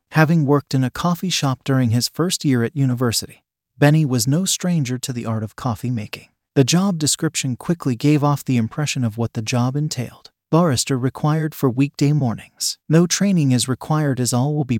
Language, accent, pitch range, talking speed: English, American, 125-155 Hz, 195 wpm